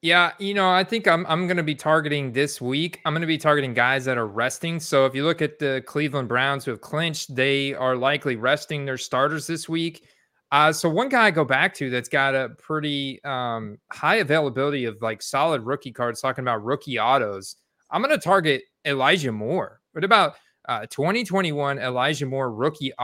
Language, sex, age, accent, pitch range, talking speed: English, male, 30-49, American, 125-150 Hz, 205 wpm